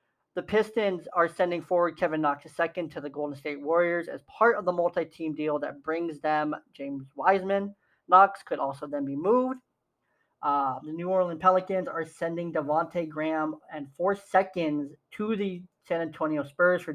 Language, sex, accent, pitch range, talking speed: English, male, American, 155-185 Hz, 170 wpm